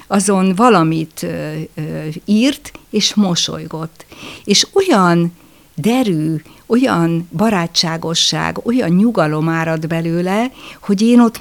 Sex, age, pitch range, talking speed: female, 60-79, 170-245 Hz, 90 wpm